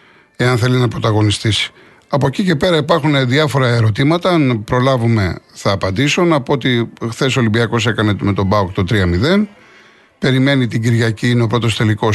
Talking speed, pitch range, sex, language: 165 wpm, 110-145 Hz, male, Greek